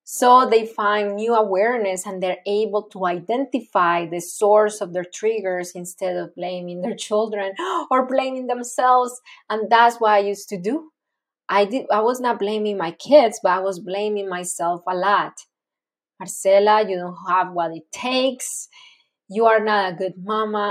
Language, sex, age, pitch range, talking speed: English, female, 20-39, 185-225 Hz, 170 wpm